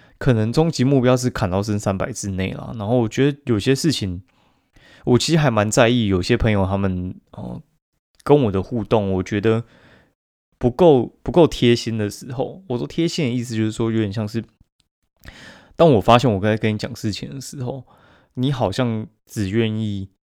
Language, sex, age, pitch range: Chinese, male, 20-39, 95-120 Hz